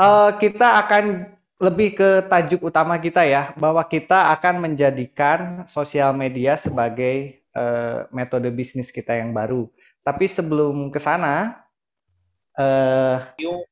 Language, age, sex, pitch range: Indonesian, 30-49, male, 135-170 Hz